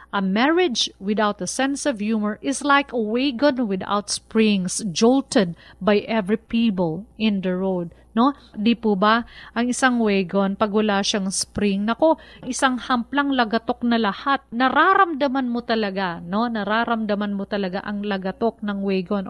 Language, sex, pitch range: Filipino, female, 200-245 Hz